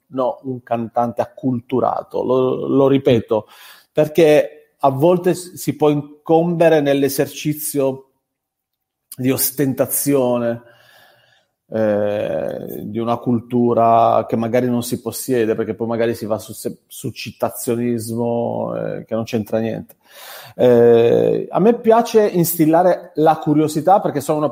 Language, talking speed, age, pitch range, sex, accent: Italian, 115 wpm, 30-49, 120-145 Hz, male, native